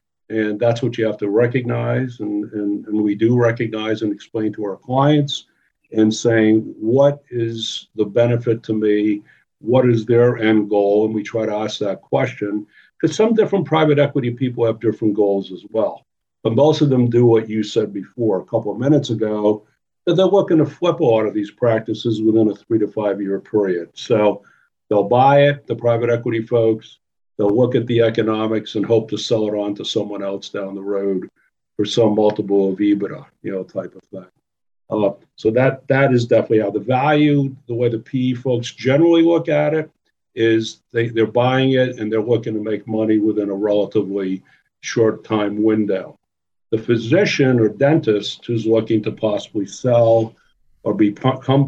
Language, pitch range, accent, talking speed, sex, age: English, 105-125 Hz, American, 190 wpm, male, 50-69